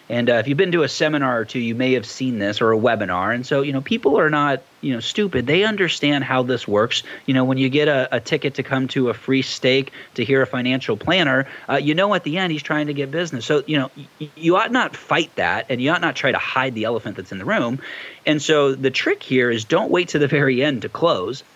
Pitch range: 115-145 Hz